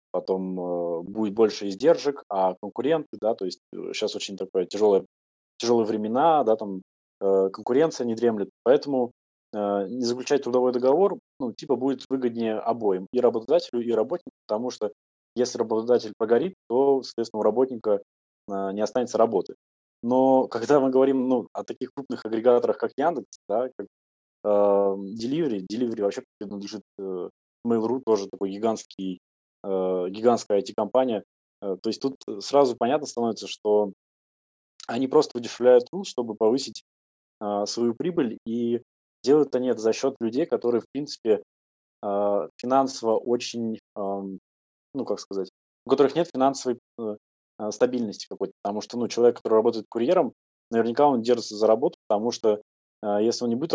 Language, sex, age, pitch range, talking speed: Russian, male, 20-39, 100-125 Hz, 145 wpm